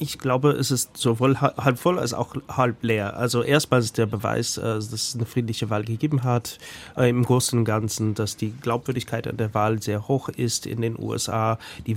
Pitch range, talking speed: 110-130 Hz, 200 wpm